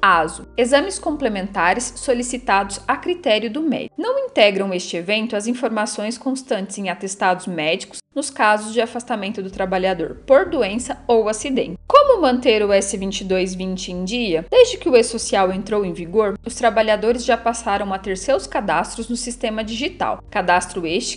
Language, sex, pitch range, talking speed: Portuguese, female, 195-255 Hz, 155 wpm